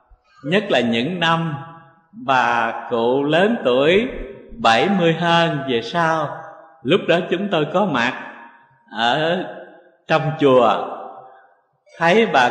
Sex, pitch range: male, 135-170 Hz